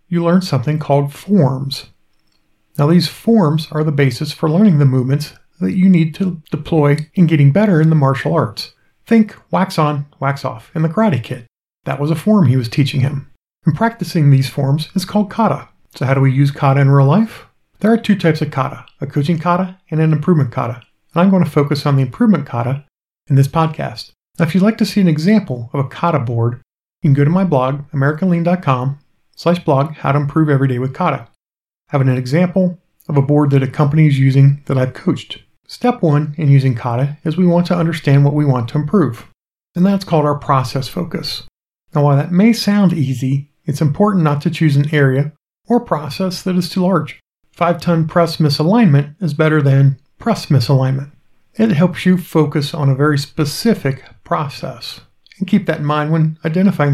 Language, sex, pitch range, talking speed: English, male, 140-175 Hz, 200 wpm